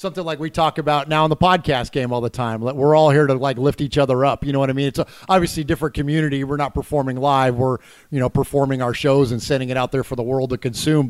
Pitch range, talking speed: 140-170 Hz, 280 wpm